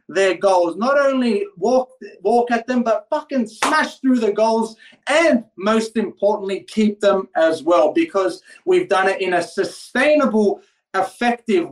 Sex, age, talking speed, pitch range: male, 30-49, 150 wpm, 180-235 Hz